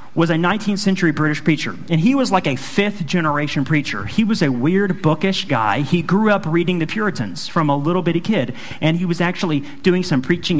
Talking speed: 215 wpm